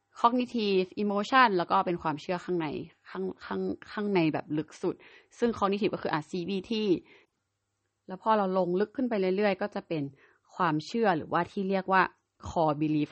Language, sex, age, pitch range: Thai, female, 20-39, 155-200 Hz